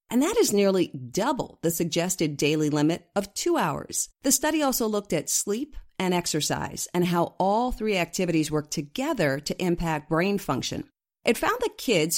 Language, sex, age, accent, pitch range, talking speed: English, female, 50-69, American, 160-215 Hz, 170 wpm